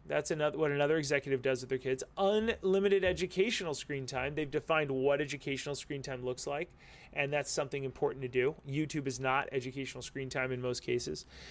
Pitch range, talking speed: 135-185 Hz, 190 wpm